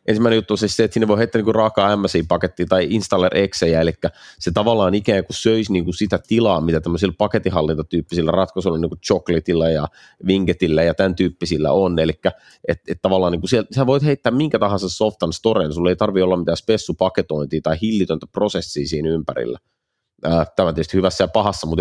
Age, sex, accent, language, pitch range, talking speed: 30-49, male, native, Finnish, 85-100 Hz, 185 wpm